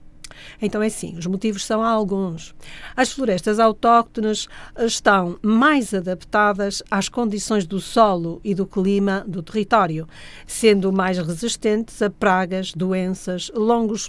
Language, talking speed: Portuguese, 125 wpm